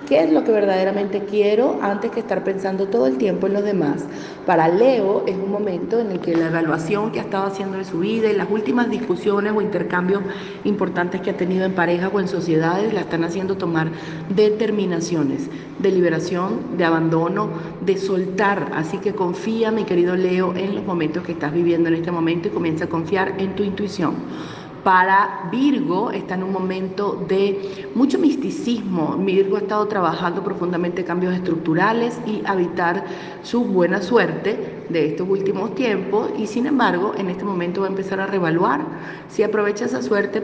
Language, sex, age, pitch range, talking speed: Spanish, female, 40-59, 175-205 Hz, 180 wpm